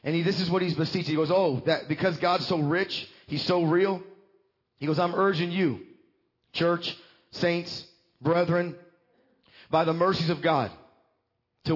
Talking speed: 160 wpm